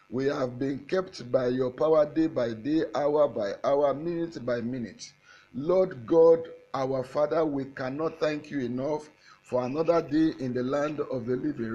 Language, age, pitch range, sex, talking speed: English, 50-69, 140-195 Hz, male, 175 wpm